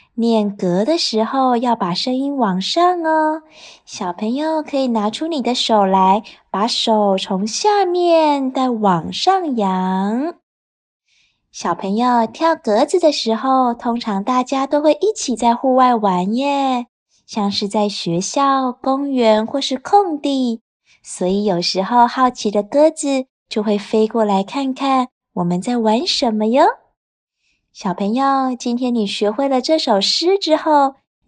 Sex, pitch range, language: female, 215-295 Hz, Chinese